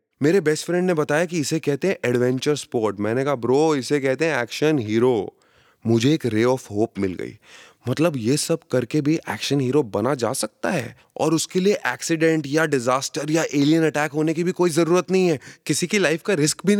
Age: 20-39